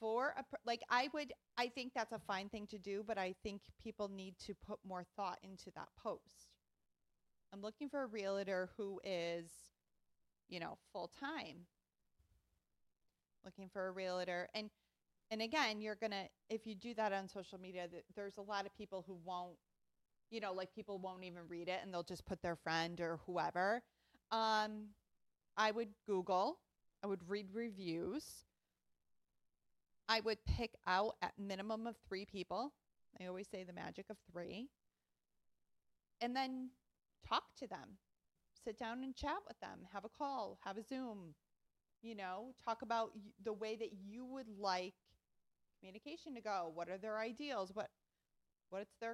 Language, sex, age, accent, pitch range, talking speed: English, female, 30-49, American, 185-225 Hz, 170 wpm